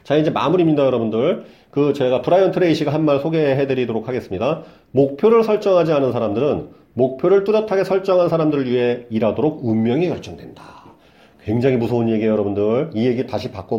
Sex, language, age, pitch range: male, Korean, 40-59, 120-175 Hz